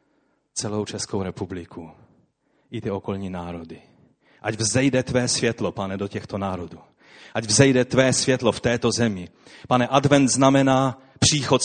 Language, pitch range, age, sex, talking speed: Czech, 115-150 Hz, 30-49, male, 135 wpm